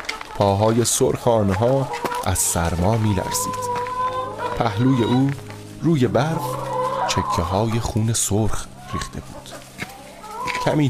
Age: 30-49